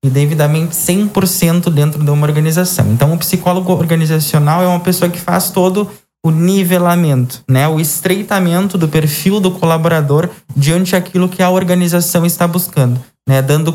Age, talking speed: 20-39, 155 wpm